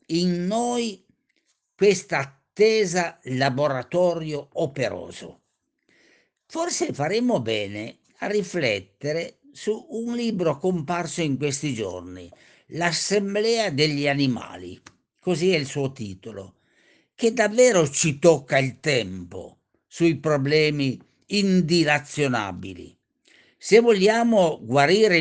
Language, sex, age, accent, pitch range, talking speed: Italian, male, 50-69, native, 130-180 Hz, 90 wpm